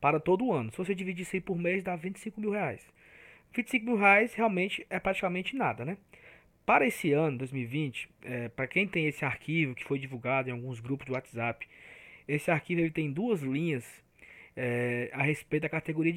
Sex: male